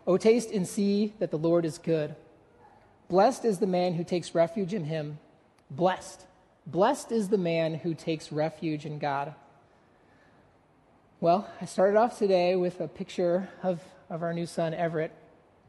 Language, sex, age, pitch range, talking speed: English, male, 30-49, 160-200 Hz, 160 wpm